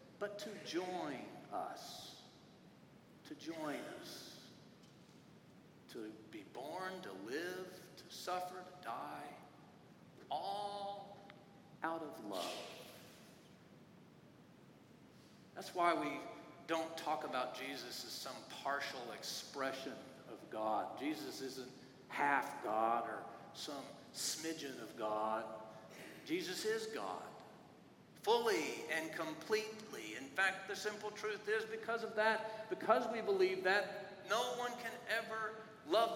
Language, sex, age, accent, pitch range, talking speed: English, male, 50-69, American, 155-220 Hz, 105 wpm